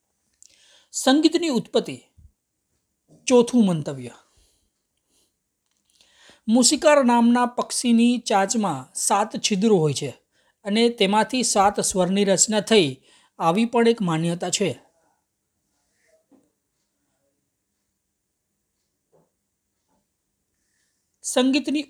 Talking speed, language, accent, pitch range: 65 wpm, Gujarati, native, 160-235 Hz